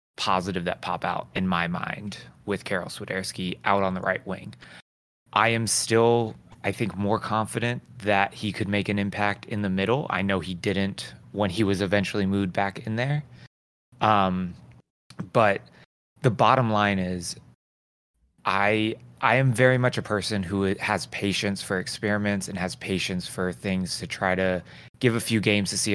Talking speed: 175 wpm